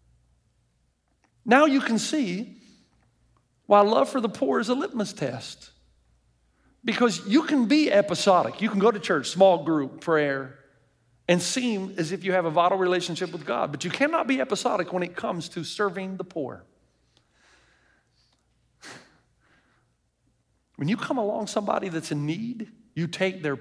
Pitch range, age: 175-230 Hz, 50-69